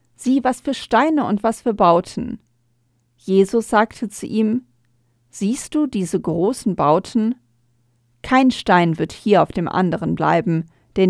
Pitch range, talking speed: 165-235 Hz, 140 wpm